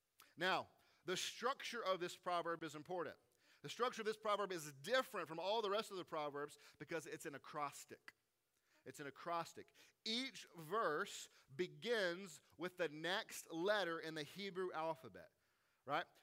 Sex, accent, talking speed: male, American, 150 wpm